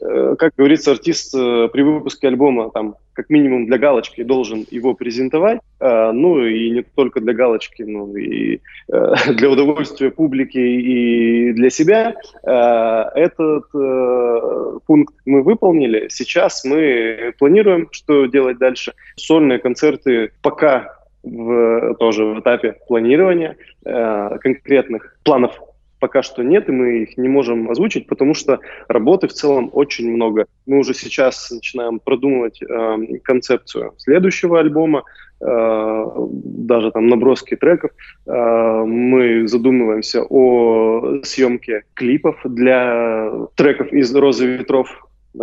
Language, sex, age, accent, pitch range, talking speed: Russian, male, 20-39, native, 115-140 Hz, 120 wpm